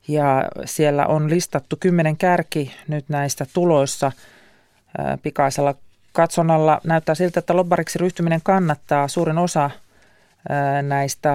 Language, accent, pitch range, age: Finnish, native, 140-175 Hz, 40-59